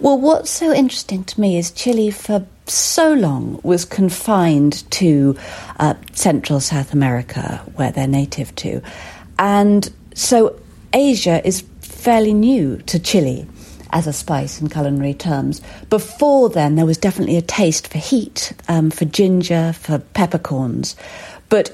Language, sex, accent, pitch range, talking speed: English, female, British, 145-205 Hz, 140 wpm